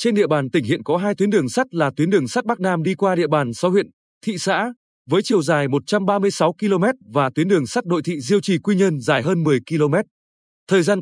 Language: Vietnamese